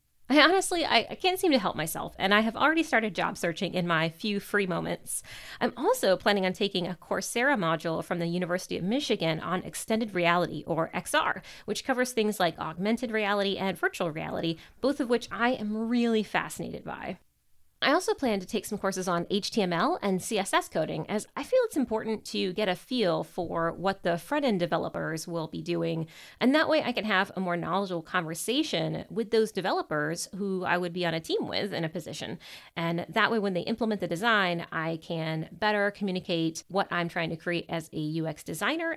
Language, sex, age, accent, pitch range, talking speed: English, female, 30-49, American, 175-245 Hz, 200 wpm